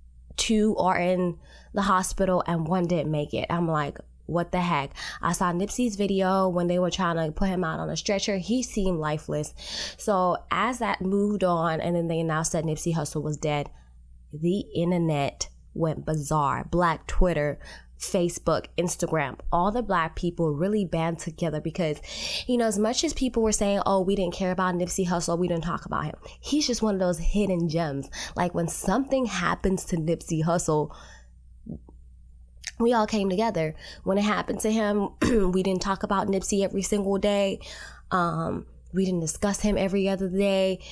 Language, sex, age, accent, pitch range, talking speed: English, female, 20-39, American, 165-200 Hz, 180 wpm